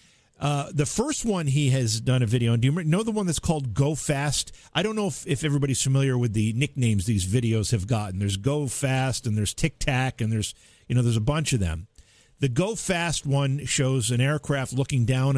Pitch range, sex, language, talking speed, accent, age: 115-155 Hz, male, English, 225 wpm, American, 50-69